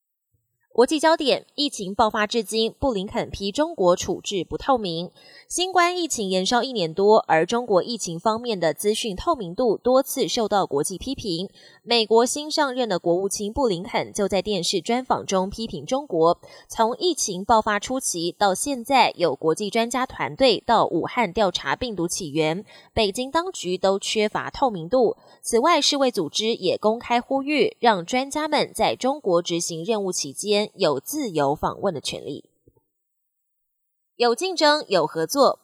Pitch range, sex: 185-260 Hz, female